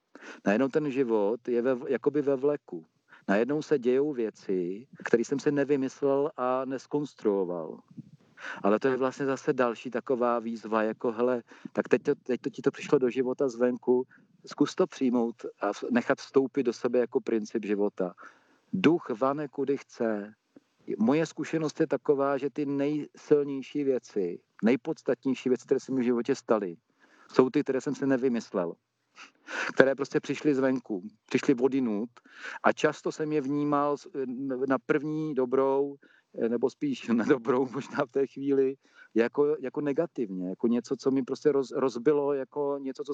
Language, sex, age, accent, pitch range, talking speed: Czech, male, 50-69, native, 125-145 Hz, 155 wpm